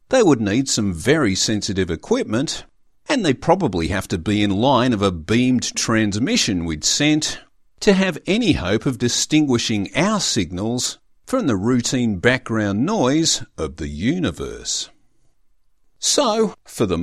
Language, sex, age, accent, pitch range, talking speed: English, male, 50-69, Australian, 100-145 Hz, 140 wpm